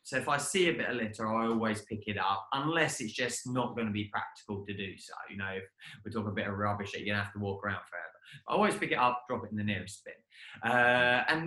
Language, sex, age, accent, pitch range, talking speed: English, male, 20-39, British, 115-165 Hz, 295 wpm